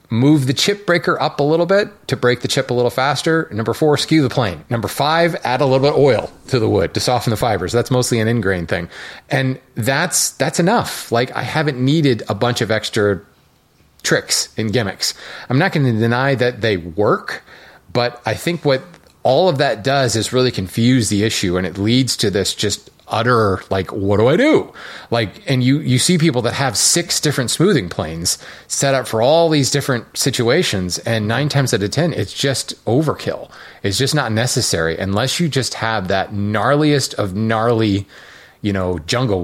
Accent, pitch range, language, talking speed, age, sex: American, 110-145 Hz, English, 200 wpm, 30-49, male